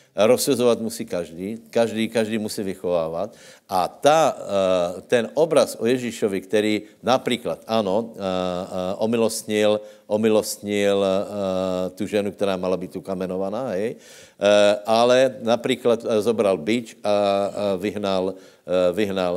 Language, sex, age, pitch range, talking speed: Slovak, male, 60-79, 100-115 Hz, 110 wpm